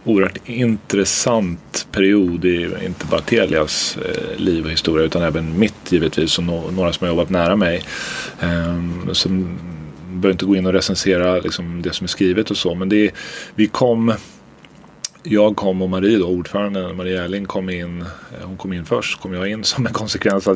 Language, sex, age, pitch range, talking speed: English, male, 30-49, 85-105 Hz, 170 wpm